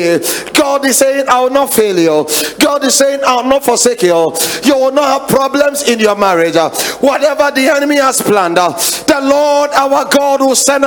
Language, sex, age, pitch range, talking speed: English, male, 40-59, 195-285 Hz, 195 wpm